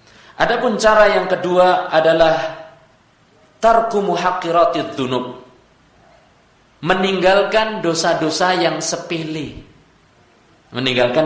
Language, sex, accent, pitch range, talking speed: Indonesian, male, native, 140-205 Hz, 60 wpm